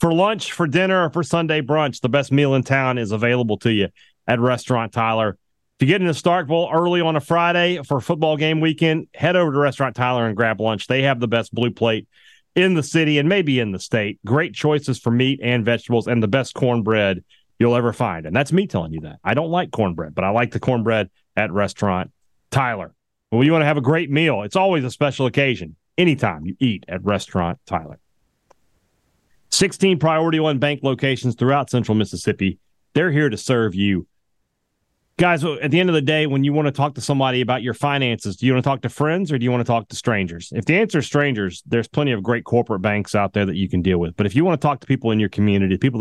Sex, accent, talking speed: male, American, 235 wpm